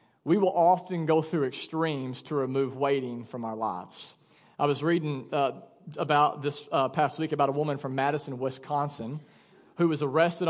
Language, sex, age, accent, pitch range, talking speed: English, male, 40-59, American, 150-190 Hz, 170 wpm